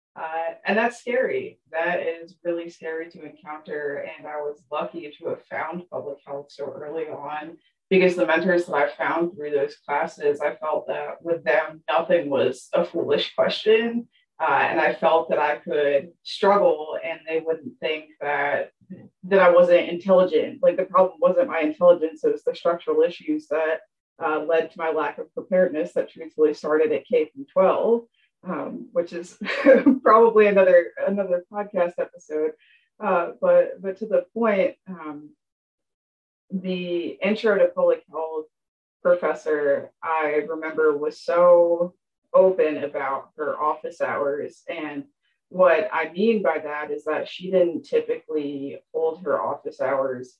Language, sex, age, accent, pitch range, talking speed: English, female, 20-39, American, 155-245 Hz, 155 wpm